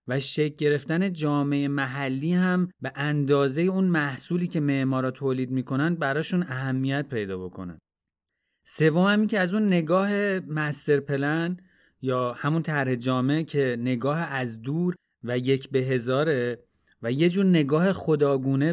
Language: Persian